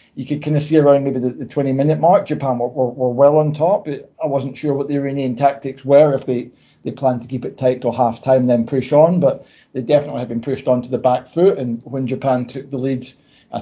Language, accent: English, British